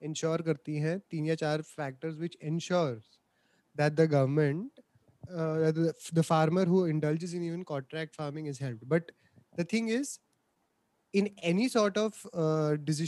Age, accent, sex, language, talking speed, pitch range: 20-39, native, male, Hindi, 85 wpm, 145-175 Hz